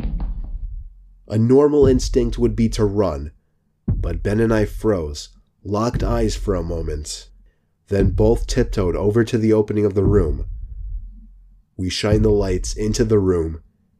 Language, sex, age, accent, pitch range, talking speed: English, male, 30-49, American, 95-110 Hz, 145 wpm